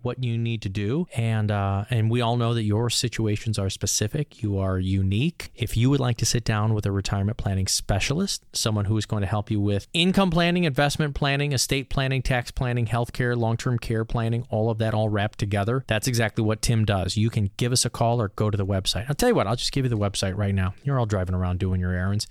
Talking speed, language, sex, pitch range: 245 wpm, English, male, 105-140 Hz